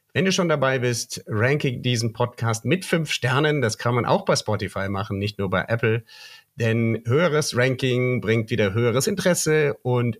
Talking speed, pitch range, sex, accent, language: 175 wpm, 110-150 Hz, male, German, German